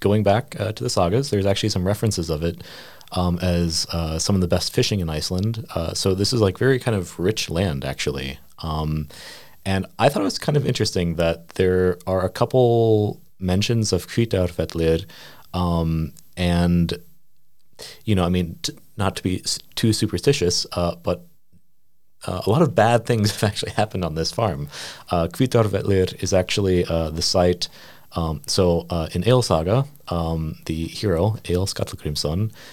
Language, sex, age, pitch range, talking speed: English, male, 30-49, 80-105 Hz, 170 wpm